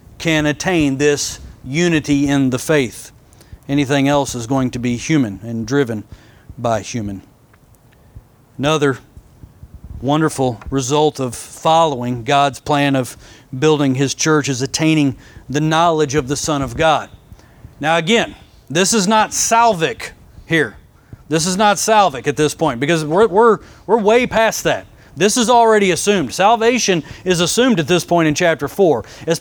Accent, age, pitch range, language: American, 40-59, 140-205 Hz, English